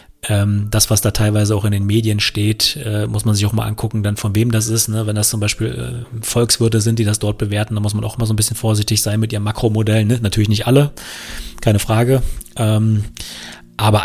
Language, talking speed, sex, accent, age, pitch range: German, 210 wpm, male, German, 30-49, 100-110 Hz